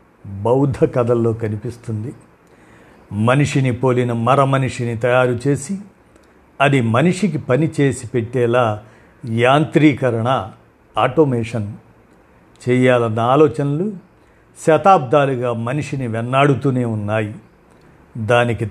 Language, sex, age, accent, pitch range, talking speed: Telugu, male, 50-69, native, 115-145 Hz, 65 wpm